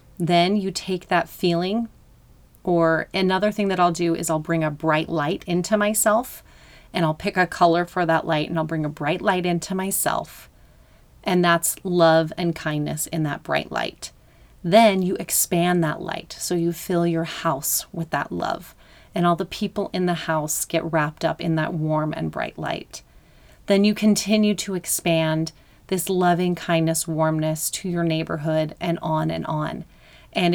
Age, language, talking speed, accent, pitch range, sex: 30-49, English, 175 wpm, American, 160-190 Hz, female